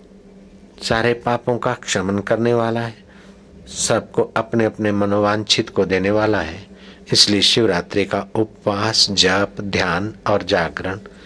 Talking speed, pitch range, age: 125 wpm, 105-150 Hz, 60-79